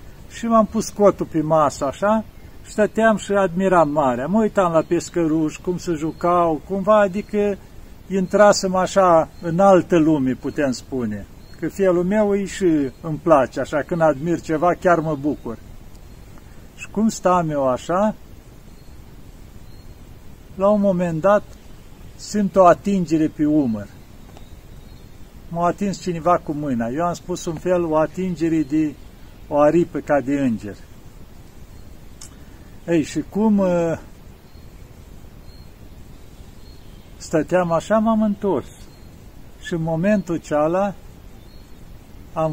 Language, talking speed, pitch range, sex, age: Romanian, 125 wpm, 145-190 Hz, male, 50-69